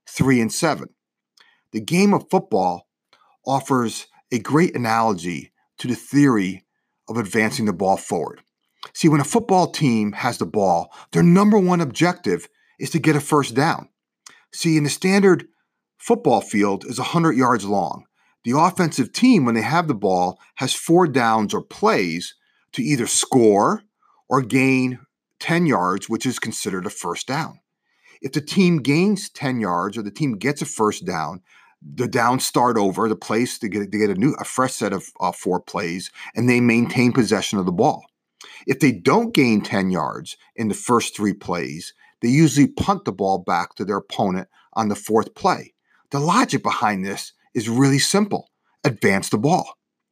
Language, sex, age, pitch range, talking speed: English, male, 40-59, 115-165 Hz, 170 wpm